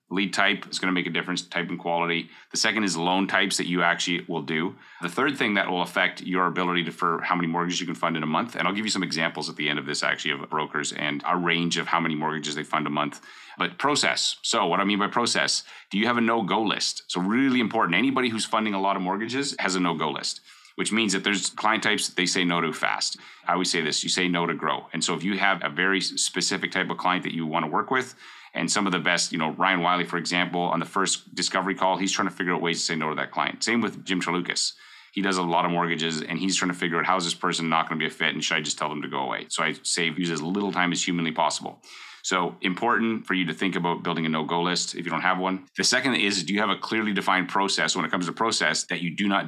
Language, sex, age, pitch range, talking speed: English, male, 30-49, 85-95 Hz, 290 wpm